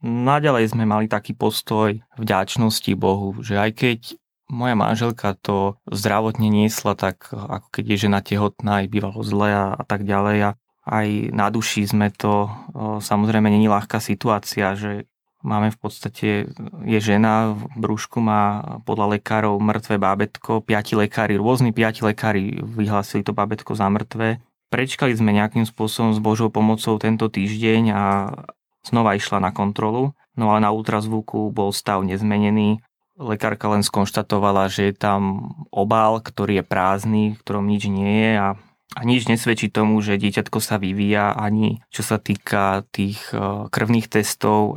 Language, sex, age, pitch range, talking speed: Slovak, male, 20-39, 105-115 Hz, 155 wpm